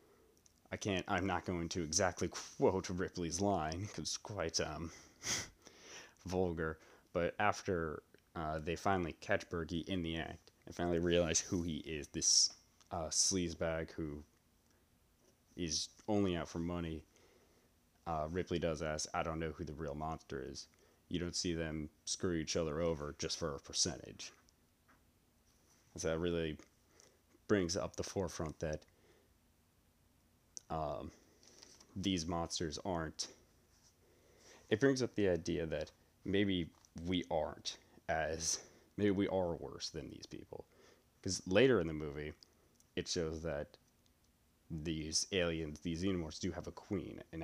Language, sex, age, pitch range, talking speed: English, male, 30-49, 80-90 Hz, 140 wpm